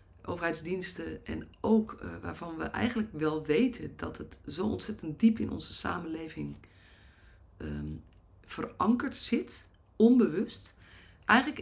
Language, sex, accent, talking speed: Dutch, female, Dutch, 110 wpm